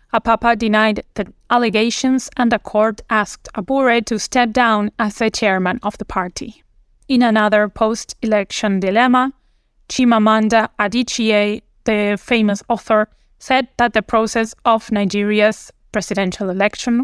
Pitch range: 205-235 Hz